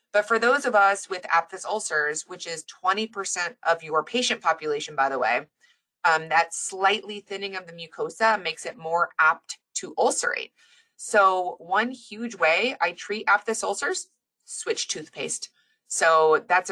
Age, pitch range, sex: 20-39, 165-225 Hz, female